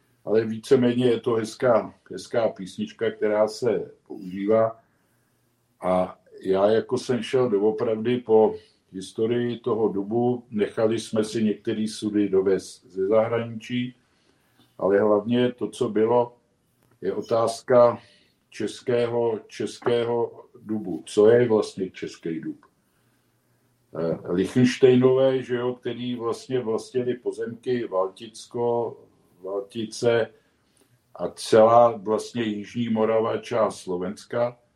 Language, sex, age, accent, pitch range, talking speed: Czech, male, 50-69, native, 105-120 Hz, 100 wpm